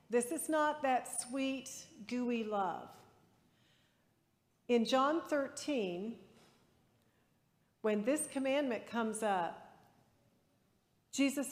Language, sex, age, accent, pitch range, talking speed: English, female, 50-69, American, 205-260 Hz, 85 wpm